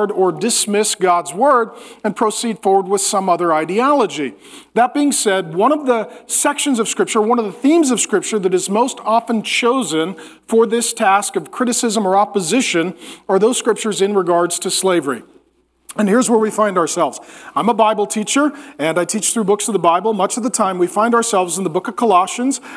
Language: English